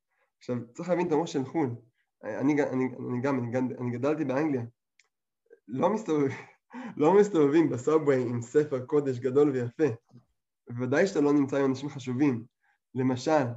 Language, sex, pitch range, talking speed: Hebrew, male, 125-170 Hz, 155 wpm